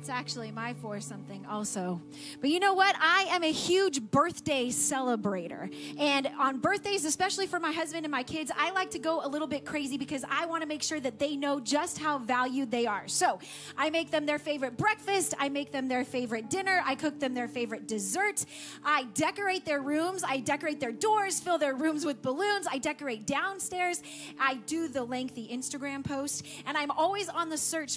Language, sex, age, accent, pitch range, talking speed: English, female, 30-49, American, 255-345 Hz, 200 wpm